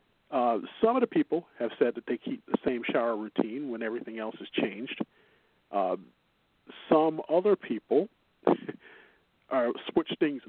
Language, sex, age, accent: English, male, 40-59, American